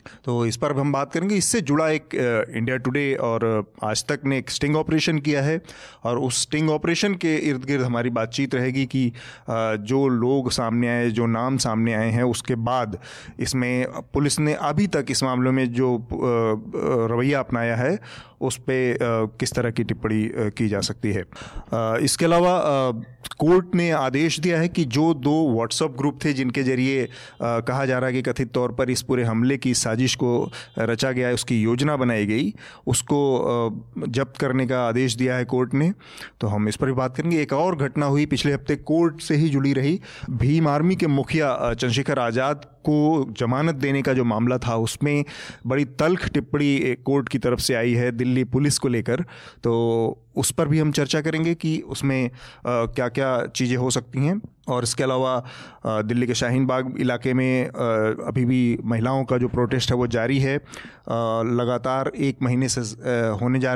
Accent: native